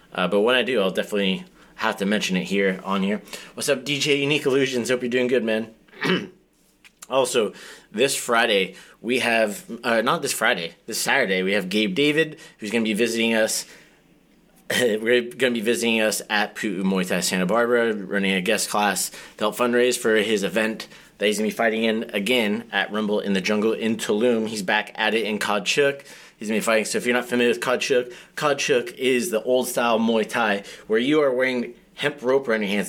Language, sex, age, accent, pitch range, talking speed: English, male, 30-49, American, 105-125 Hz, 205 wpm